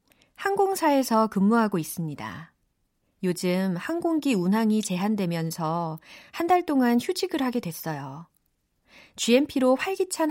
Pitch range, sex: 170-255 Hz, female